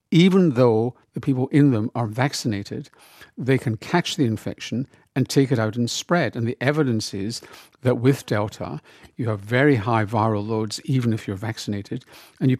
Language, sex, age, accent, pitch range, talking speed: English, male, 50-69, British, 115-145 Hz, 180 wpm